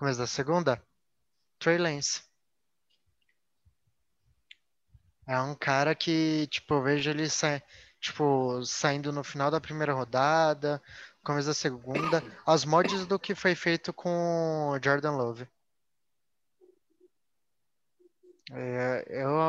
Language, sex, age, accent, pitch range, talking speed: Portuguese, male, 20-39, Brazilian, 135-170 Hz, 110 wpm